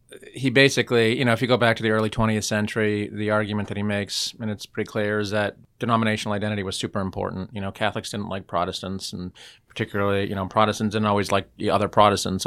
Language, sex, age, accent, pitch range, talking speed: English, male, 30-49, American, 100-110 Hz, 220 wpm